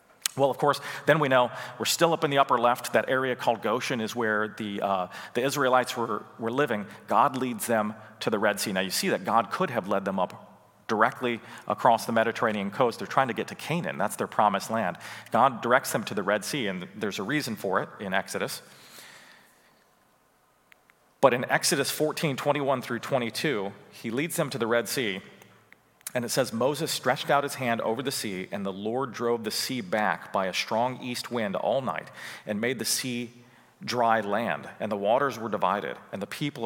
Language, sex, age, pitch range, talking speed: English, male, 40-59, 105-135 Hz, 205 wpm